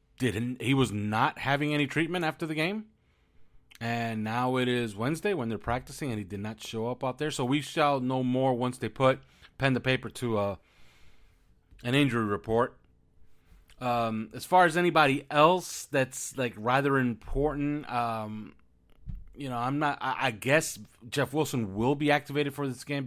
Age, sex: 30-49, male